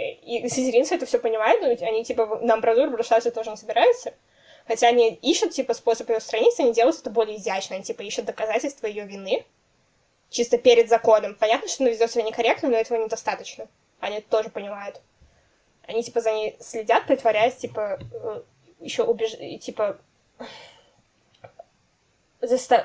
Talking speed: 150 wpm